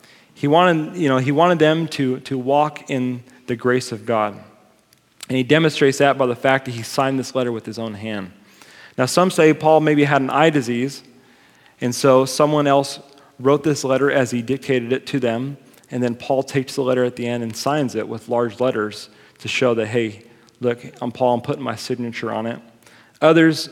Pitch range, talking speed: 120-140 Hz, 205 wpm